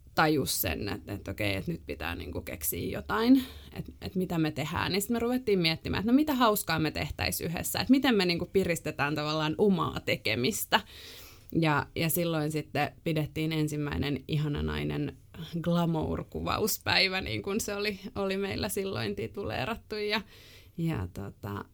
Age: 20-39